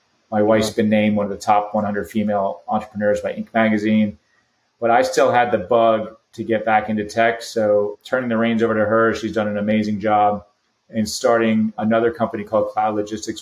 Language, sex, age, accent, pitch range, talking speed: English, male, 30-49, American, 105-120 Hz, 195 wpm